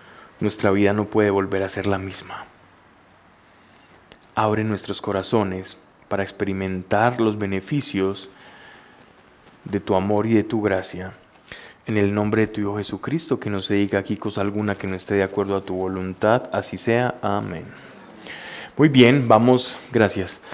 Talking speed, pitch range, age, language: 150 wpm, 100-125 Hz, 20-39, Spanish